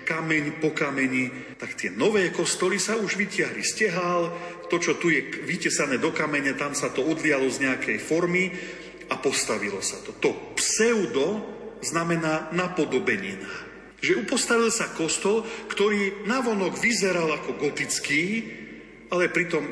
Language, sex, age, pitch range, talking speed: Slovak, male, 40-59, 135-185 Hz, 135 wpm